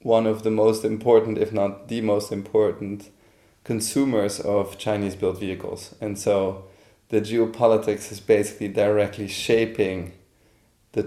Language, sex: English, male